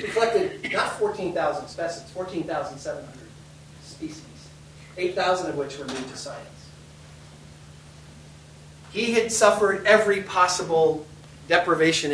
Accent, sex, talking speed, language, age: American, male, 110 wpm, English, 40-59